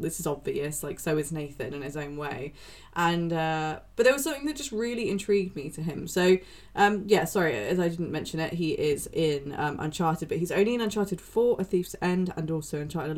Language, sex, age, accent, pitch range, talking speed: English, female, 20-39, British, 145-190 Hz, 230 wpm